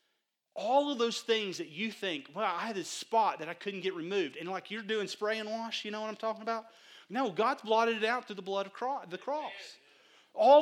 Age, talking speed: 30-49, 235 wpm